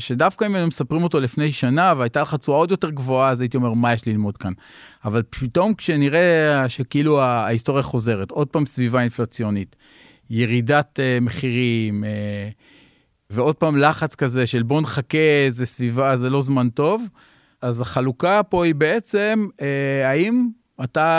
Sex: male